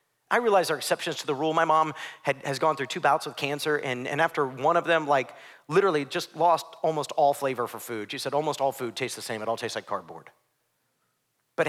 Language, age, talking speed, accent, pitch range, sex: English, 40-59, 235 wpm, American, 135-155 Hz, male